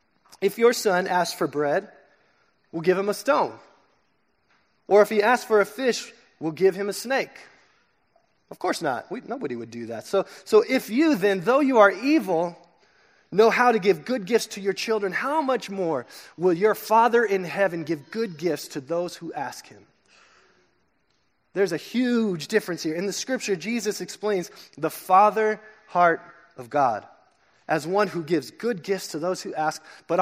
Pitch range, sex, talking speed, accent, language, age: 160-210 Hz, male, 180 wpm, American, English, 20-39